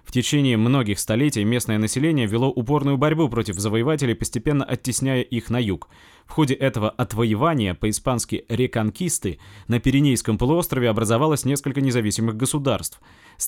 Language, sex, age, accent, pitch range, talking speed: Russian, male, 20-39, native, 110-140 Hz, 135 wpm